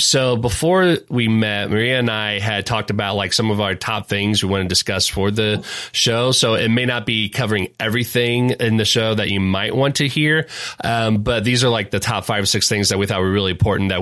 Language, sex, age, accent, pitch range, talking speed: English, male, 30-49, American, 95-115 Hz, 245 wpm